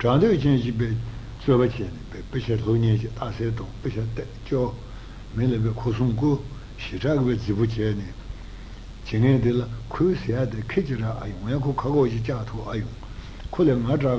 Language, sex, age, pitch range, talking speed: Italian, male, 60-79, 110-130 Hz, 55 wpm